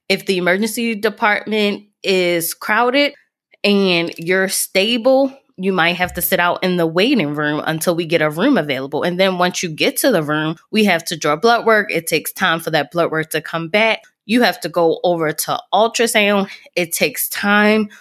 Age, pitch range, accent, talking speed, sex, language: 20-39, 160-210 Hz, American, 195 wpm, female, English